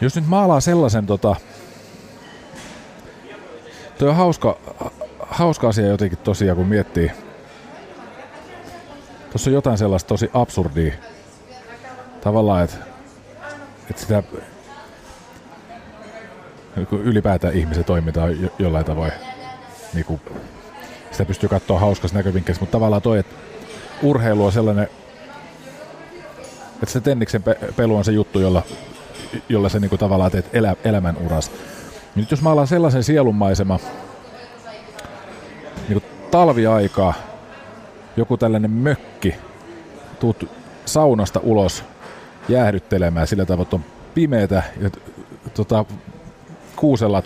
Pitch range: 95-120 Hz